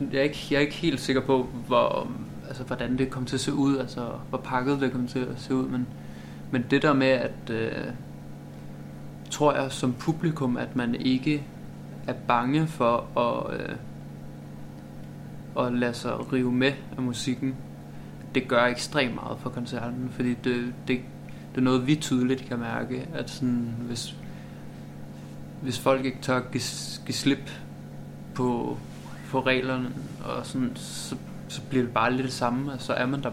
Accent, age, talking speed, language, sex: native, 20-39, 175 wpm, Danish, male